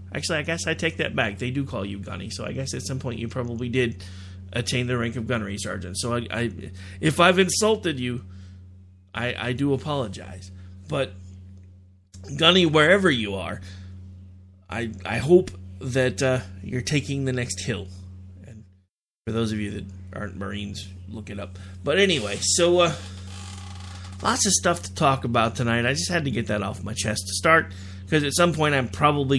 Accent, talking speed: American, 190 wpm